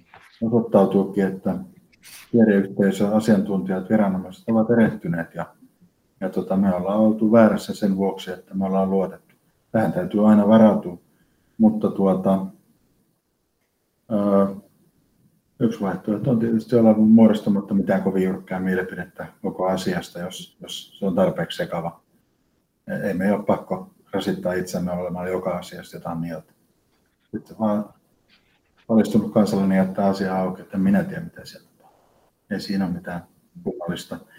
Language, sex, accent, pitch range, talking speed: Finnish, male, native, 95-110 Hz, 125 wpm